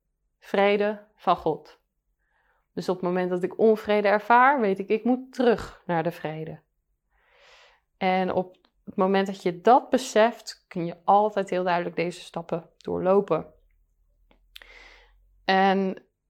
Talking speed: 135 wpm